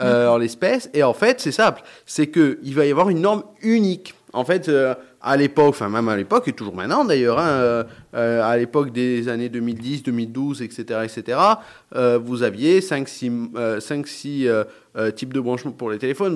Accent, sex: French, male